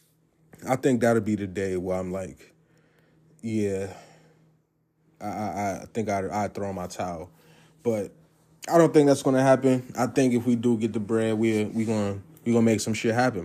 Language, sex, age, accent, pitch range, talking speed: English, male, 20-39, American, 115-155 Hz, 190 wpm